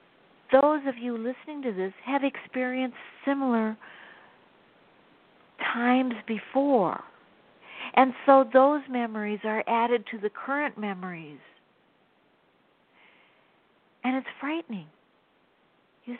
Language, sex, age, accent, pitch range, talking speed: English, female, 60-79, American, 200-255 Hz, 95 wpm